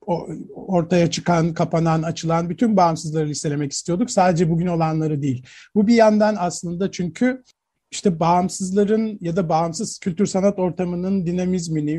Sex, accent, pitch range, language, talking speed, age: male, native, 160-210 Hz, Turkish, 125 wpm, 50-69